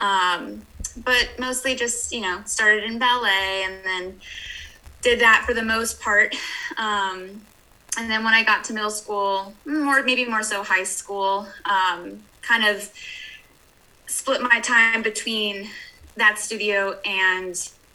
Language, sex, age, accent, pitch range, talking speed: English, female, 20-39, American, 195-245 Hz, 140 wpm